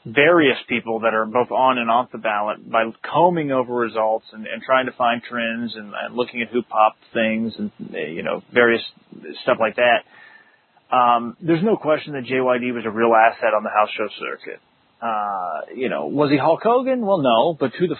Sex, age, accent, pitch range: male, 30-49, American, 120-175 Hz